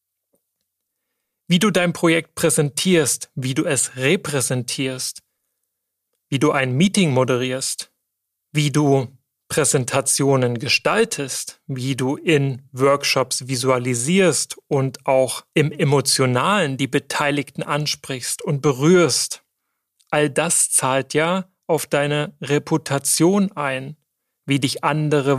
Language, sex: German, male